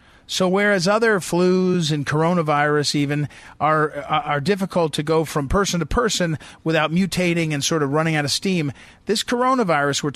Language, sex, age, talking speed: English, male, 40-59, 165 wpm